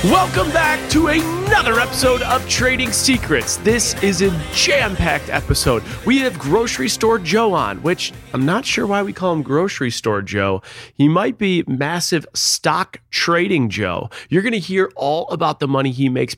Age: 30-49